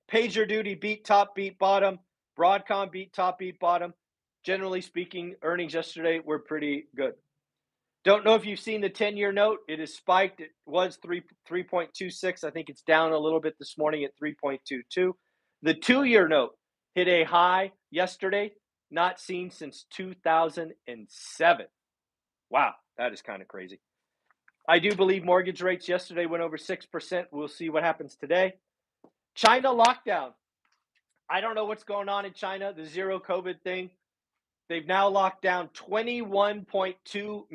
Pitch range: 160-195 Hz